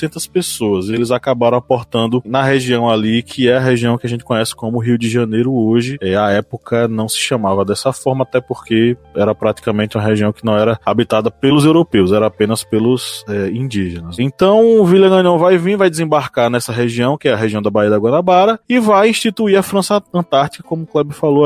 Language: Portuguese